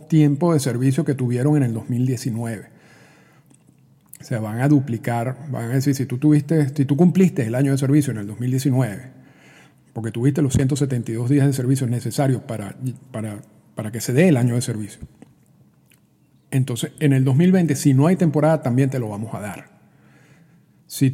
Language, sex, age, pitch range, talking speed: Spanish, male, 50-69, 120-150 Hz, 175 wpm